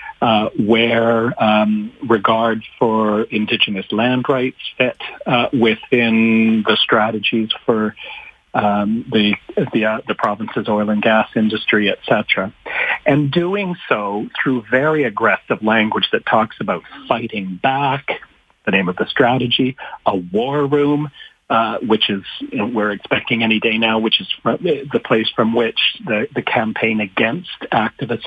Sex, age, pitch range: male, 40-59, 105-125 Hz